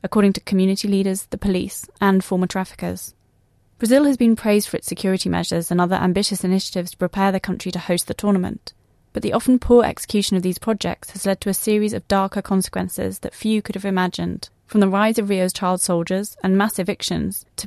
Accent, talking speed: British, 205 wpm